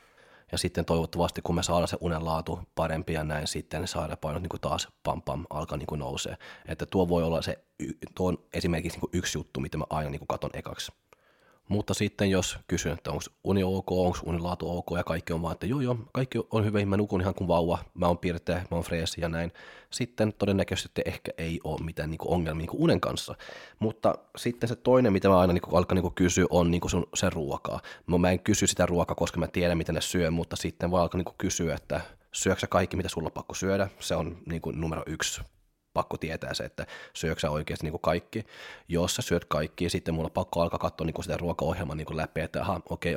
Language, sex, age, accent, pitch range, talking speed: Finnish, male, 20-39, native, 80-90 Hz, 205 wpm